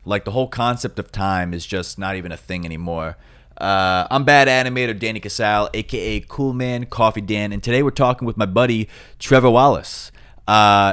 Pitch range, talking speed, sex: 95-115 Hz, 185 wpm, male